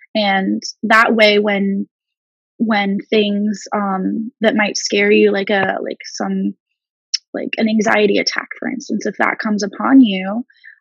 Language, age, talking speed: English, 20-39, 145 wpm